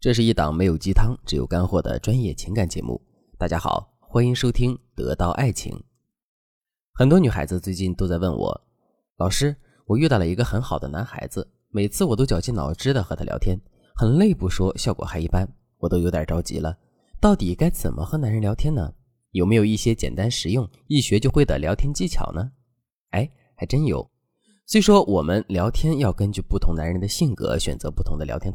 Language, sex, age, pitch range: Chinese, male, 20-39, 90-140 Hz